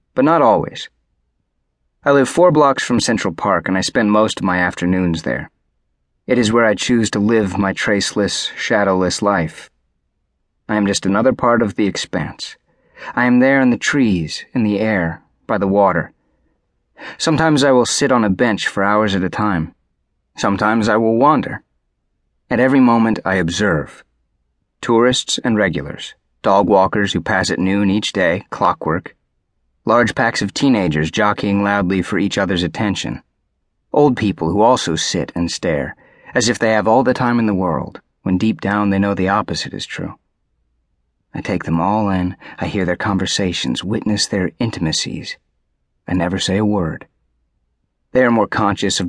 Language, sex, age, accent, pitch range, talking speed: English, male, 30-49, American, 85-110 Hz, 170 wpm